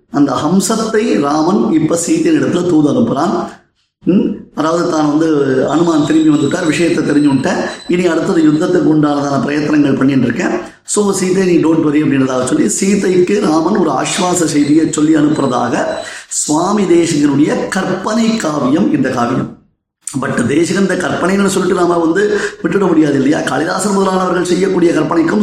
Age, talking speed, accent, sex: 30-49, 130 wpm, native, male